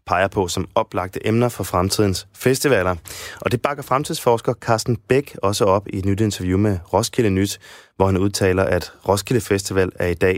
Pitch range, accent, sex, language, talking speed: 95-115 Hz, native, male, Danish, 185 wpm